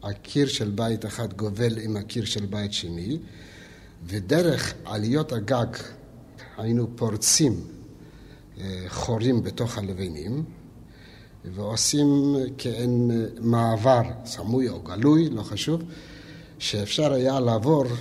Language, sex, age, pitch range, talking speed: Hebrew, male, 60-79, 105-130 Hz, 95 wpm